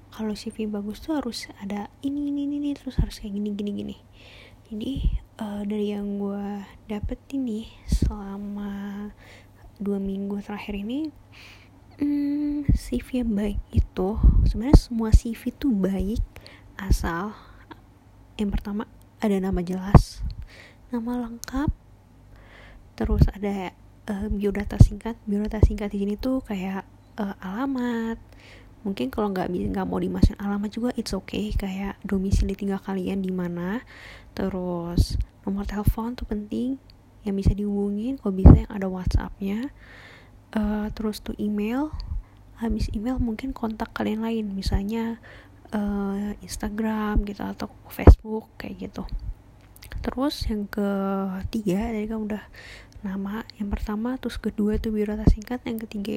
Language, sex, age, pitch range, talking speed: Indonesian, female, 20-39, 195-230 Hz, 130 wpm